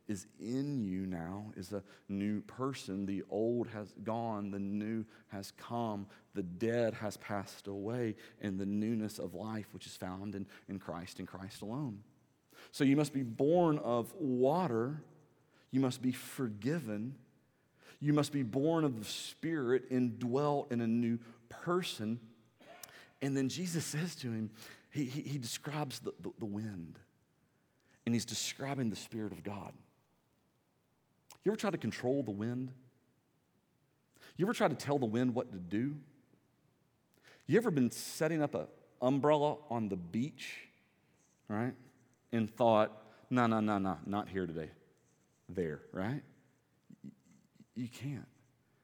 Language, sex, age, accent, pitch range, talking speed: English, male, 40-59, American, 105-130 Hz, 150 wpm